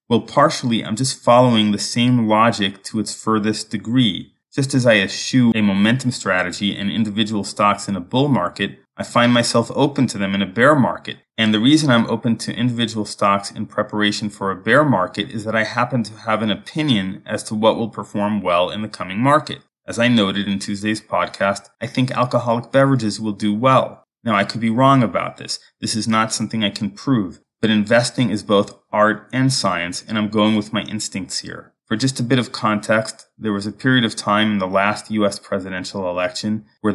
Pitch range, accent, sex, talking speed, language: 100-120 Hz, American, male, 210 wpm, English